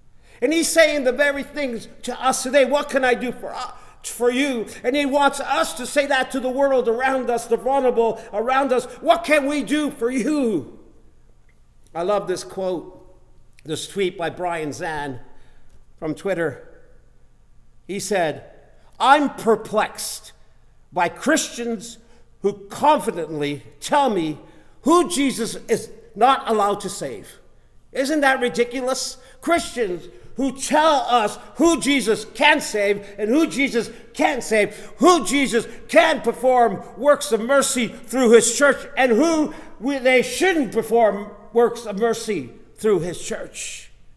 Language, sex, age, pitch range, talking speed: English, male, 50-69, 195-275 Hz, 140 wpm